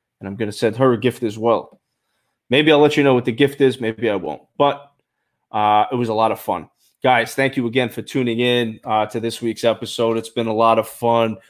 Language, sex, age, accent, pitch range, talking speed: English, male, 20-39, American, 110-130 Hz, 250 wpm